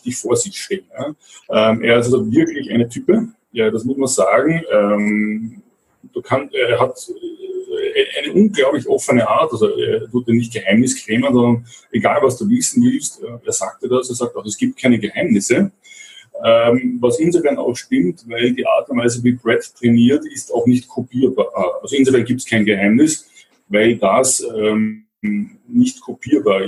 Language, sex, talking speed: German, male, 155 wpm